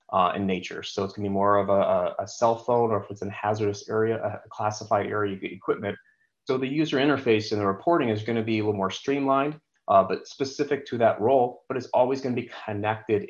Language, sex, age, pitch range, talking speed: English, male, 30-49, 105-120 Hz, 245 wpm